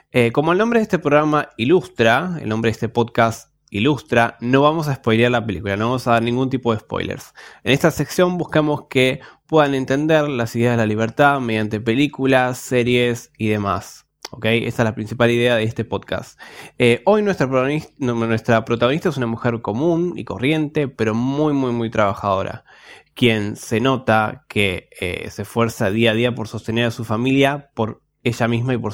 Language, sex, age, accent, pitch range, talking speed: Spanish, male, 20-39, Argentinian, 115-140 Hz, 190 wpm